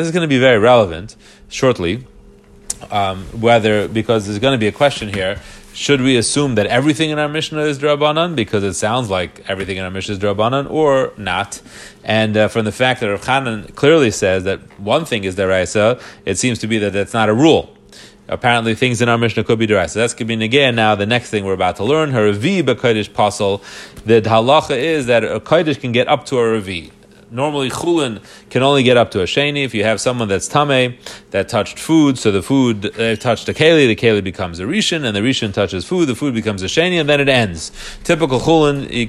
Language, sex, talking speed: English, male, 225 wpm